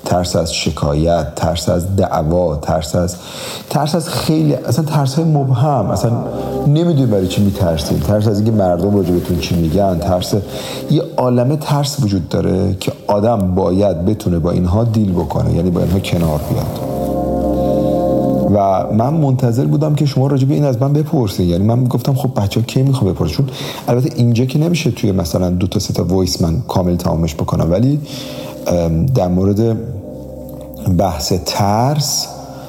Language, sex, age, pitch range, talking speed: Persian, male, 40-59, 90-125 Hz, 155 wpm